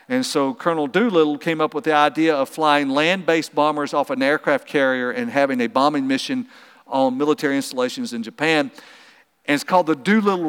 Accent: American